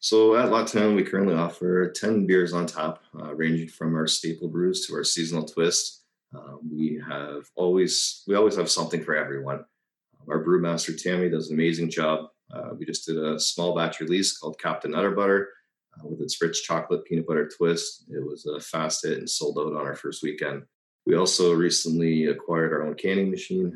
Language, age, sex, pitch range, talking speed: English, 30-49, male, 80-90 Hz, 195 wpm